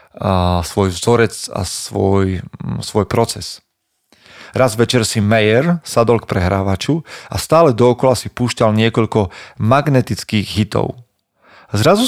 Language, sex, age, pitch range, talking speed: Slovak, male, 40-59, 105-130 Hz, 115 wpm